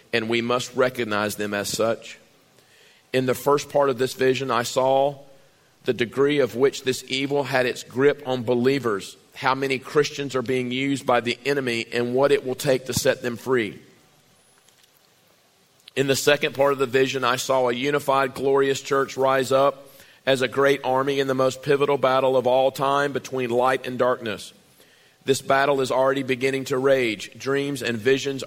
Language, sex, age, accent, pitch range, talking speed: English, male, 40-59, American, 120-140 Hz, 180 wpm